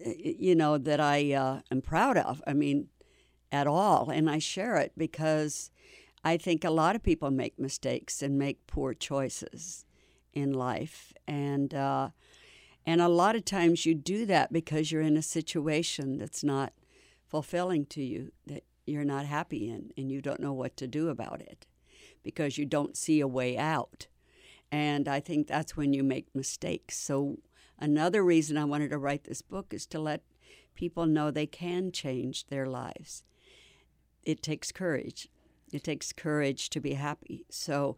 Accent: American